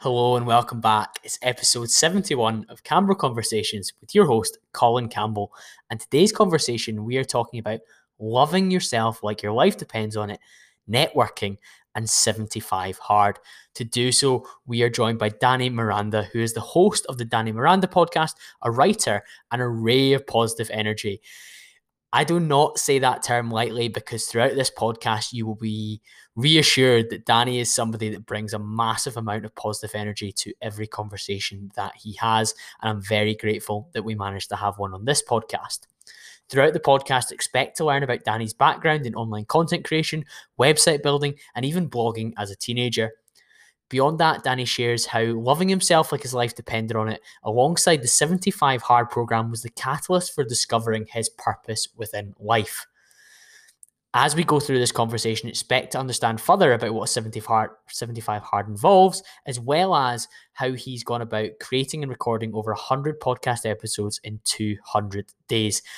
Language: English